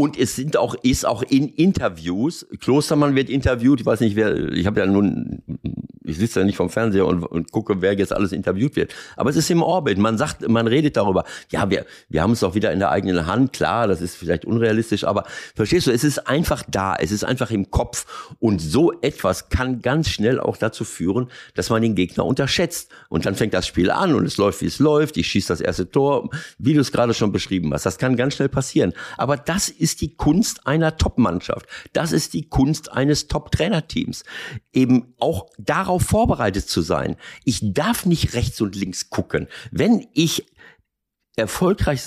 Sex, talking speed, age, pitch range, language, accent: male, 205 wpm, 50-69, 110-155 Hz, German, German